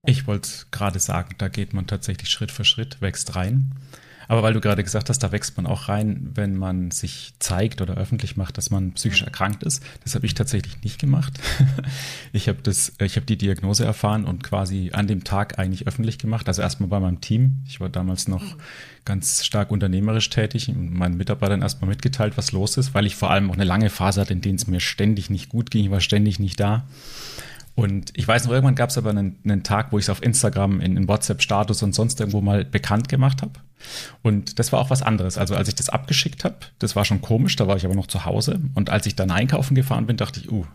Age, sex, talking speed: 30-49, male, 235 wpm